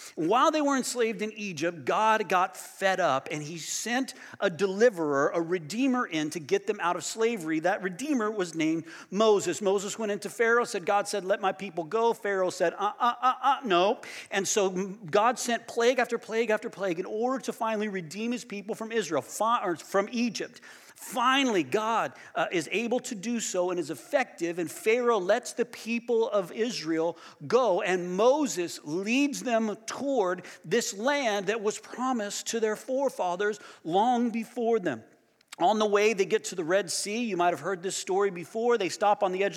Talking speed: 185 wpm